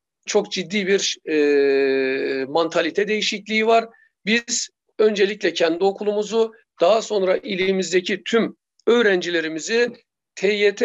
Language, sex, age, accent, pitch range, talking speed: Turkish, male, 50-69, native, 185-230 Hz, 95 wpm